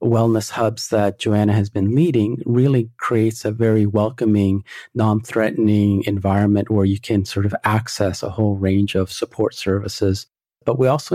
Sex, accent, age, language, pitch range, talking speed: male, American, 40-59, English, 100-115 Hz, 155 wpm